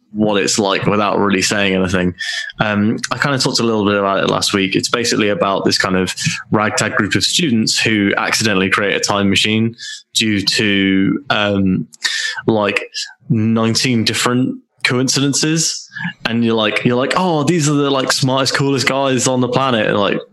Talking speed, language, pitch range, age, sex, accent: 175 wpm, English, 100-125 Hz, 20-39, male, British